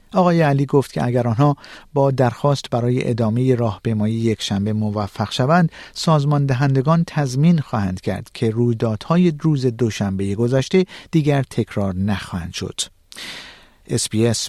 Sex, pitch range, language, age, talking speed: male, 105-145 Hz, Persian, 50-69, 130 wpm